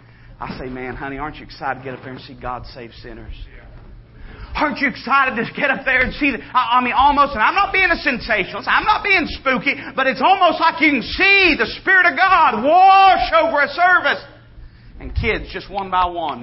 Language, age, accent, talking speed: English, 40-59, American, 220 wpm